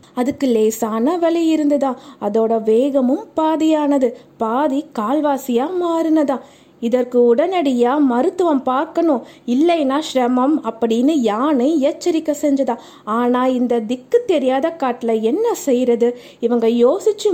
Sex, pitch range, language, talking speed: female, 250-340 Hz, Tamil, 100 wpm